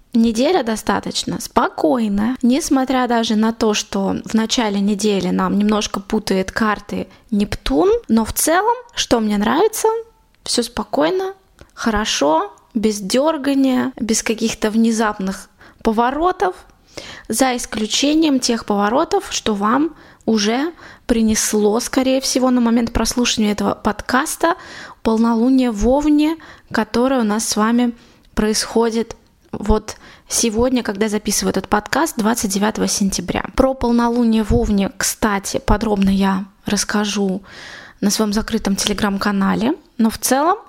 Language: Russian